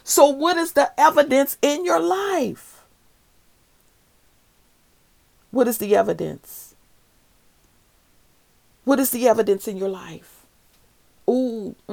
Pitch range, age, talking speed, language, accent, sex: 220-295 Hz, 40-59, 100 wpm, English, American, female